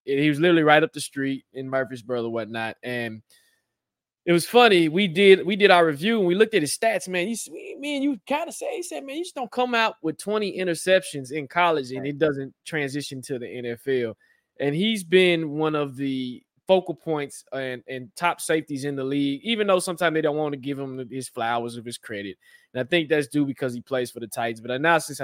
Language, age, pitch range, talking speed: English, 20-39, 135-175 Hz, 230 wpm